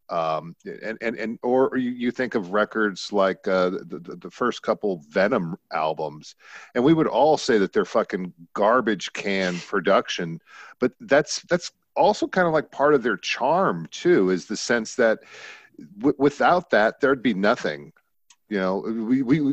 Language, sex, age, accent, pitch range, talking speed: English, male, 50-69, American, 90-110 Hz, 170 wpm